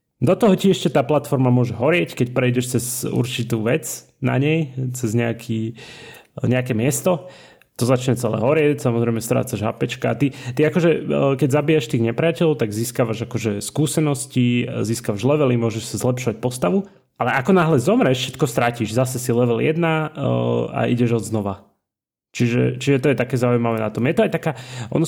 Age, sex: 30-49, male